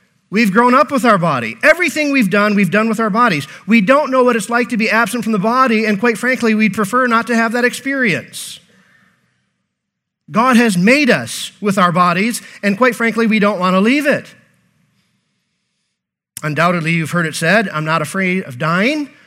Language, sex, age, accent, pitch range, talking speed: English, male, 40-59, American, 185-235 Hz, 195 wpm